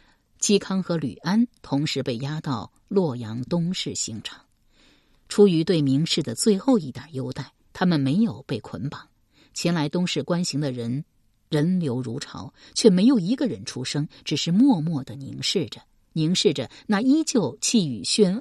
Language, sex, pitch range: Chinese, female, 135-200 Hz